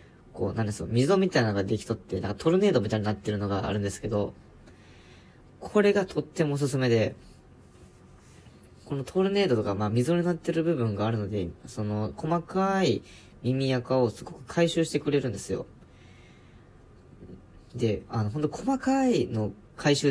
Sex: female